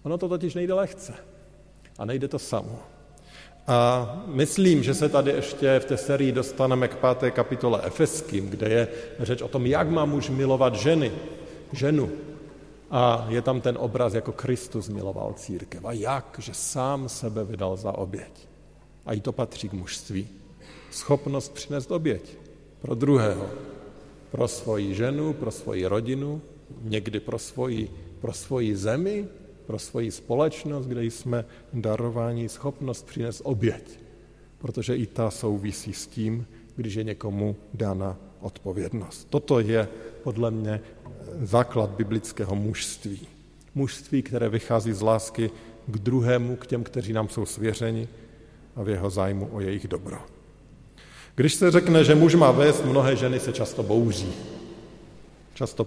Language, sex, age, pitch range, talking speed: Slovak, male, 50-69, 110-140 Hz, 145 wpm